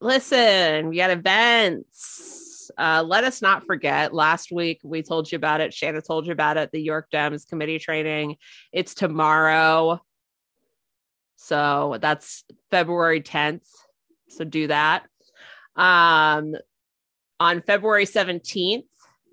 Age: 20-39